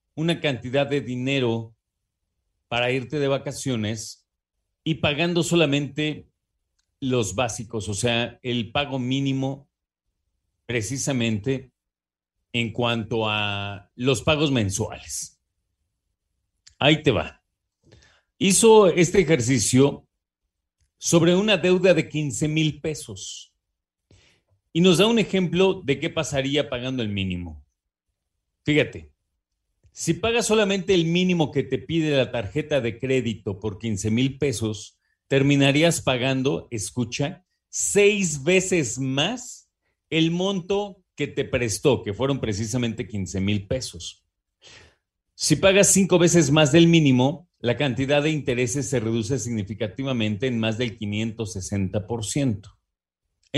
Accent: Mexican